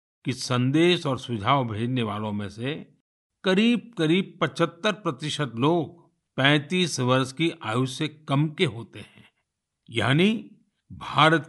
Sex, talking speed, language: male, 125 wpm, Hindi